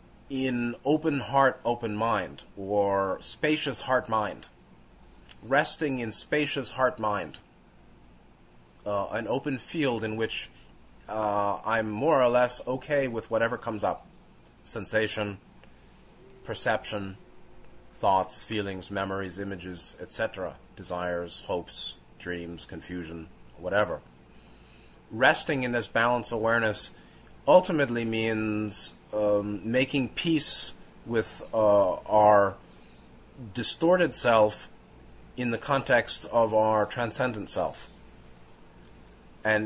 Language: English